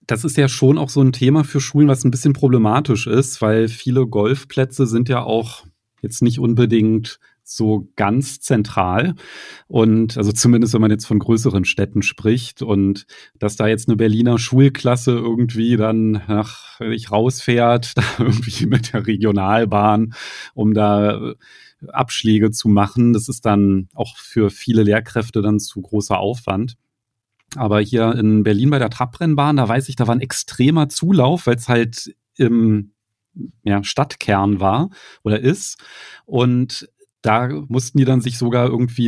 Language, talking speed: German, 160 wpm